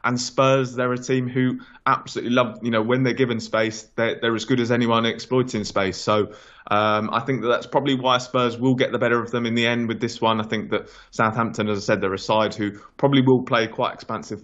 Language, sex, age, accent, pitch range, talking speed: English, male, 20-39, British, 105-125 Hz, 245 wpm